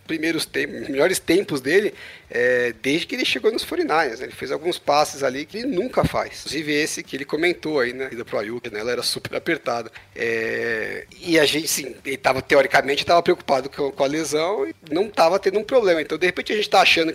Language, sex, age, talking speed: Portuguese, male, 40-59, 225 wpm